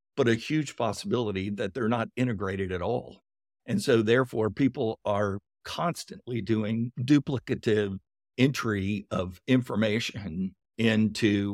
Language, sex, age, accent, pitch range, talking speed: English, male, 50-69, American, 95-115 Hz, 115 wpm